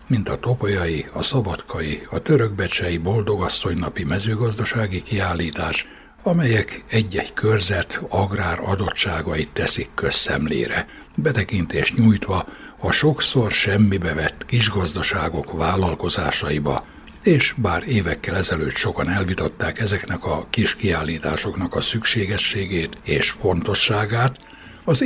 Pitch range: 85-115 Hz